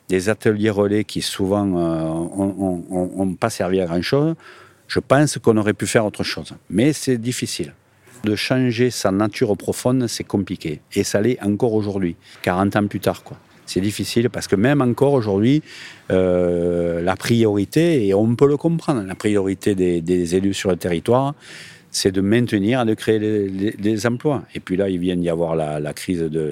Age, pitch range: 40-59, 90-110 Hz